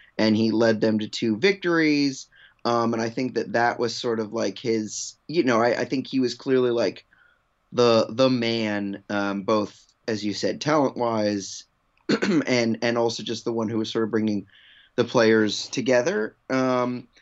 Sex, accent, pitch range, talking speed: male, American, 115-150 Hz, 180 wpm